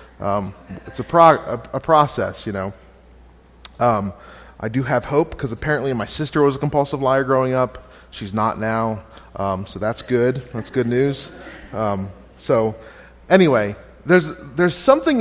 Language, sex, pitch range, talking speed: English, male, 110-150 Hz, 160 wpm